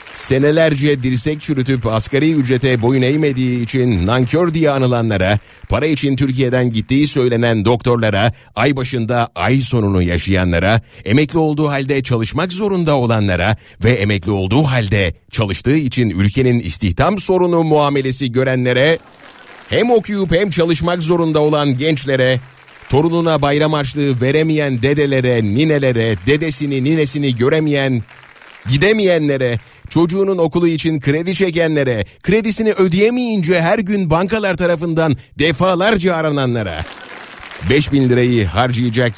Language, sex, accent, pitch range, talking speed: Turkish, male, native, 120-165 Hz, 110 wpm